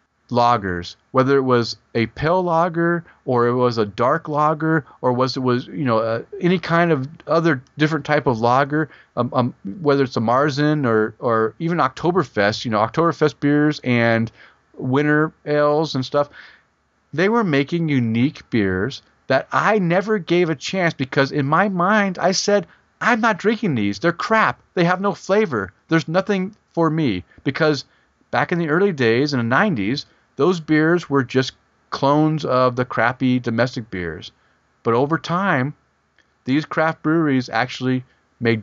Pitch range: 115-160 Hz